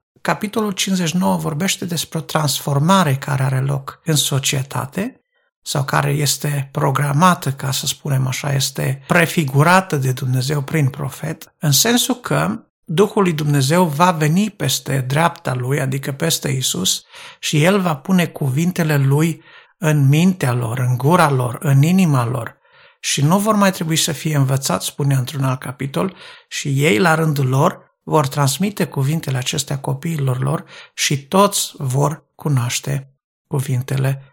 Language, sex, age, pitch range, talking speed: Romanian, male, 60-79, 140-170 Hz, 145 wpm